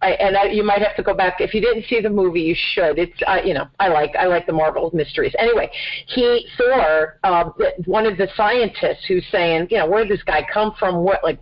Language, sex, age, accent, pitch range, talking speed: English, female, 40-59, American, 175-215 Hz, 250 wpm